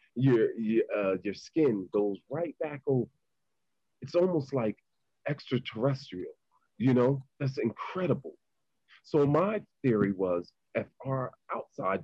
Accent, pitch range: American, 100-135 Hz